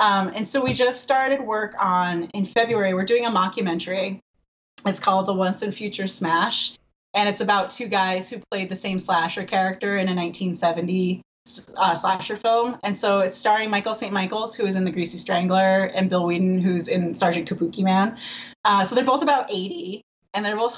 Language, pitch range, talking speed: English, 185-235 Hz, 195 wpm